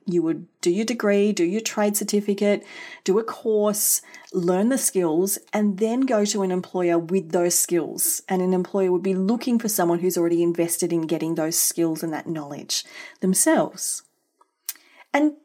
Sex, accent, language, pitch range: female, Australian, English, 175-250 Hz